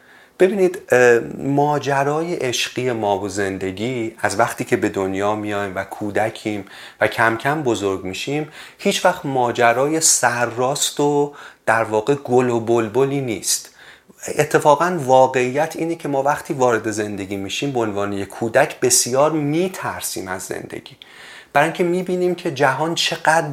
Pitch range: 110-150 Hz